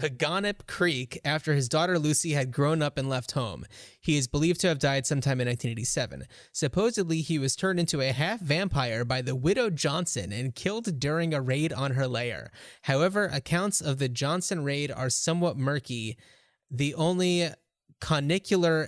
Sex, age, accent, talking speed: male, 20-39, American, 170 wpm